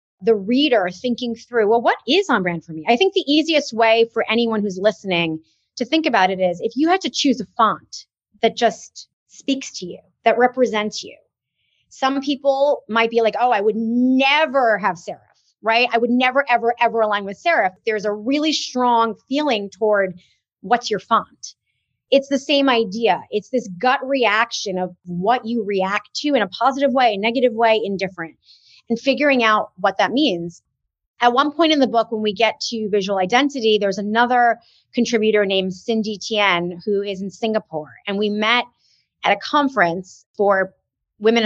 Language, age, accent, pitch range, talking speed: English, 30-49, American, 200-250 Hz, 180 wpm